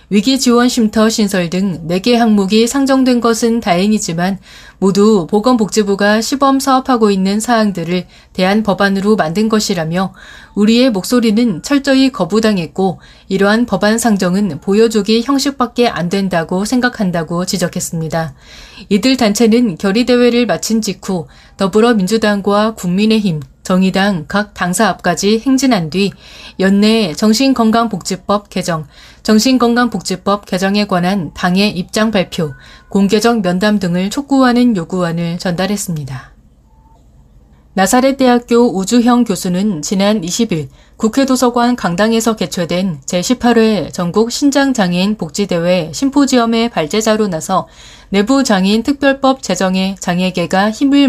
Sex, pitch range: female, 185-235 Hz